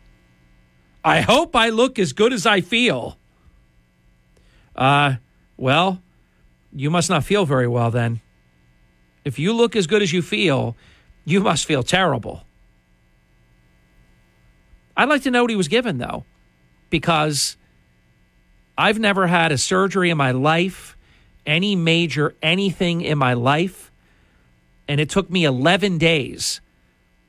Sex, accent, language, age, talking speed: male, American, English, 40-59, 130 wpm